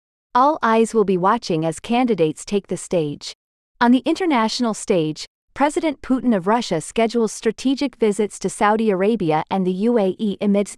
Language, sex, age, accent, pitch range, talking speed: English, female, 40-59, American, 190-245 Hz, 155 wpm